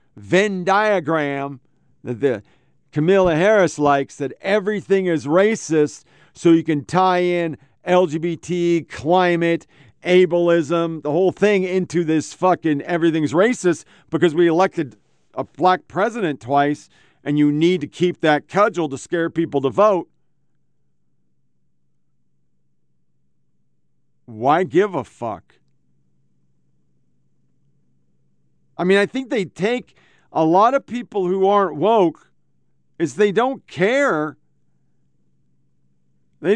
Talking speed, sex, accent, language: 110 wpm, male, American, English